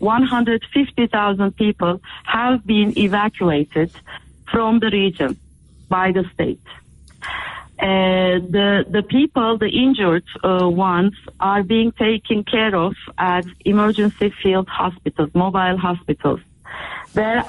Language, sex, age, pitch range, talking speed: English, female, 40-59, 180-220 Hz, 105 wpm